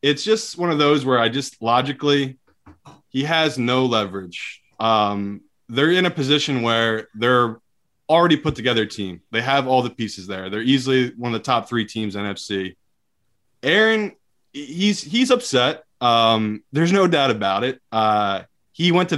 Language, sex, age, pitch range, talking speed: English, male, 20-39, 115-150 Hz, 170 wpm